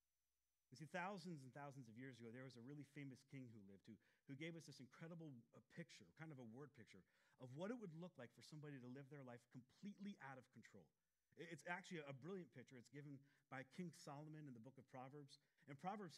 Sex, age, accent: male, 40-59, American